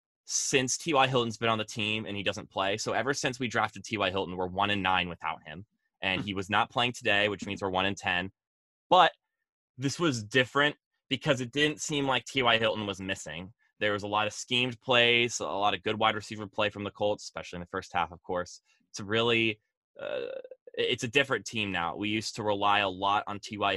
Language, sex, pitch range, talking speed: English, male, 95-120 Hz, 230 wpm